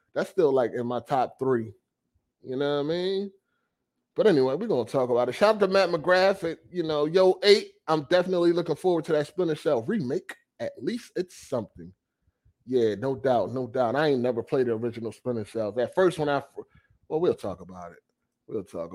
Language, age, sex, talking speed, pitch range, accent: English, 30-49, male, 210 wpm, 125-185 Hz, American